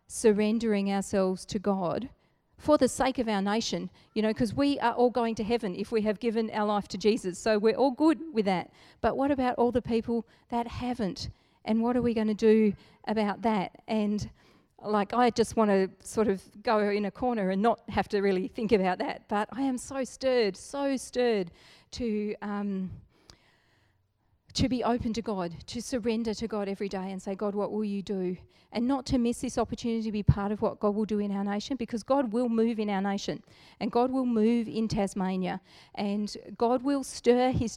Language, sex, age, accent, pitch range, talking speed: English, female, 40-59, Australian, 195-235 Hz, 210 wpm